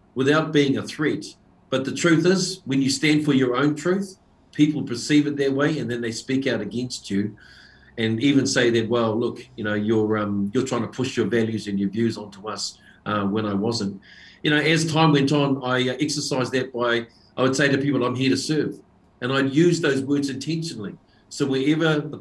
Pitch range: 120-145 Hz